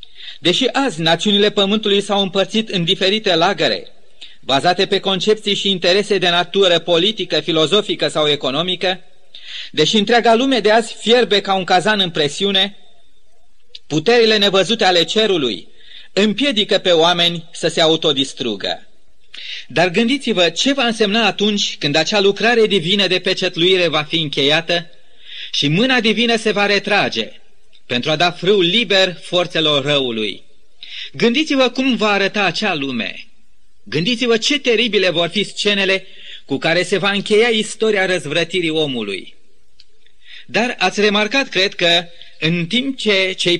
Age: 30-49